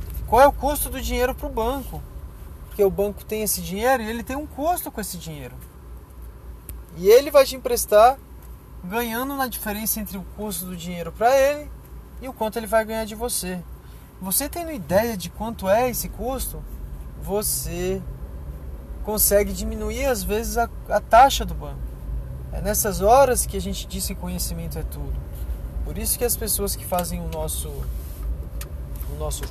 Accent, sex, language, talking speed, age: Brazilian, male, Portuguese, 175 wpm, 20-39